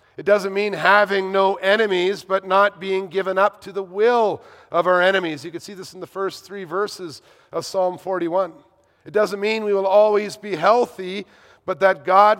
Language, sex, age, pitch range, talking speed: English, male, 40-59, 145-195 Hz, 195 wpm